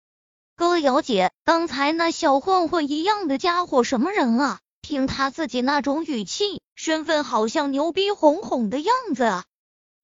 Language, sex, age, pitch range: Chinese, female, 20-39, 265-360 Hz